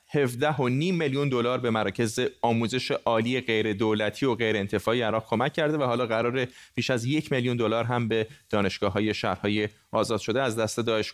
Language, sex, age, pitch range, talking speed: Persian, male, 30-49, 110-140 Hz, 165 wpm